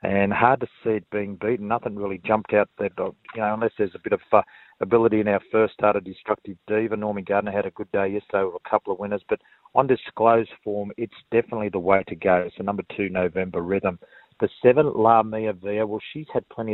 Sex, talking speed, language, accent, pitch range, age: male, 235 wpm, English, Australian, 95-110 Hz, 40-59